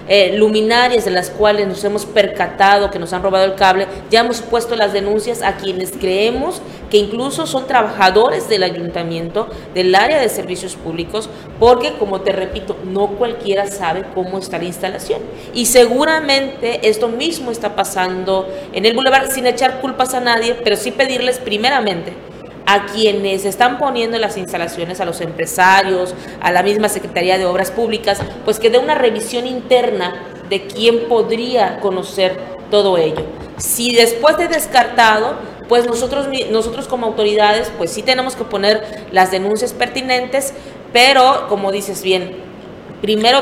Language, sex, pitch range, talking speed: Spanish, female, 195-240 Hz, 155 wpm